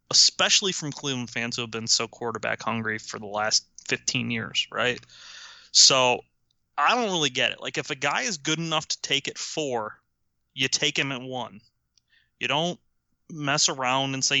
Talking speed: 185 wpm